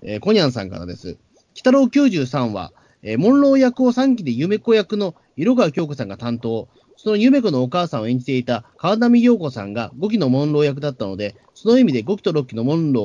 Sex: male